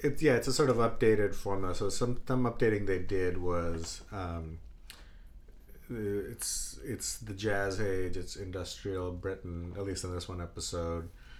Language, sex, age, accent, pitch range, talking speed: English, male, 30-49, American, 85-100 Hz, 160 wpm